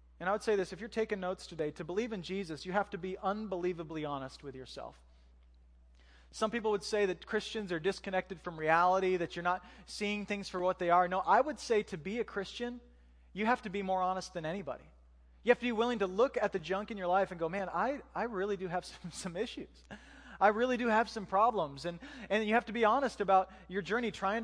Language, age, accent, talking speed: English, 20-39, American, 240 wpm